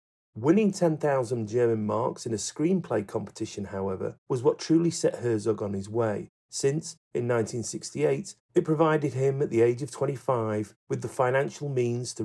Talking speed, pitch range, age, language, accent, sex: 160 wpm, 110-135 Hz, 40-59, English, British, male